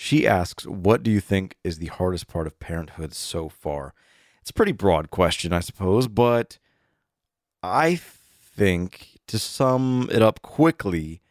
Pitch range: 90-120 Hz